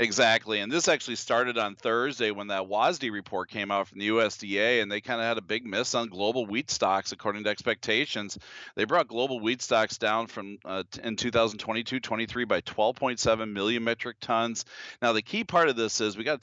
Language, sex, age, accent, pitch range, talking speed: English, male, 40-59, American, 105-125 Hz, 205 wpm